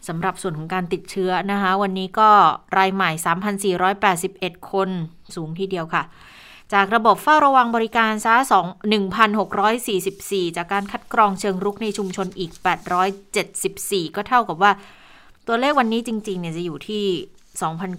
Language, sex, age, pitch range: Thai, female, 20-39, 175-205 Hz